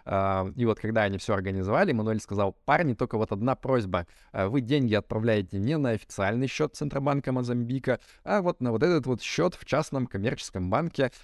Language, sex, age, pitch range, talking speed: Russian, male, 20-39, 100-125 Hz, 175 wpm